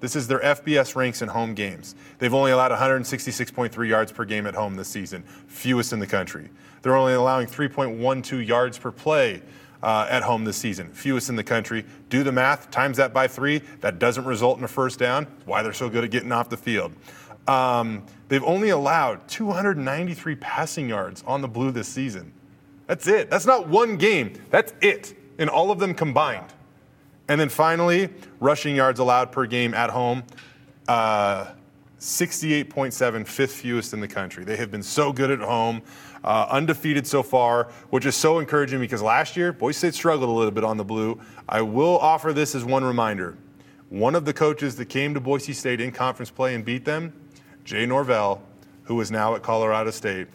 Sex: male